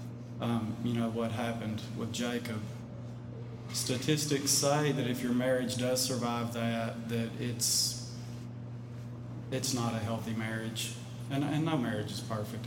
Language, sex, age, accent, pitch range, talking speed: English, male, 30-49, American, 115-120 Hz, 135 wpm